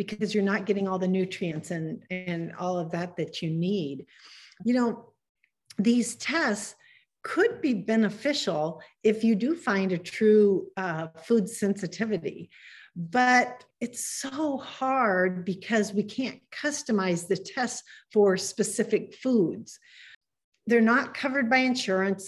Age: 50-69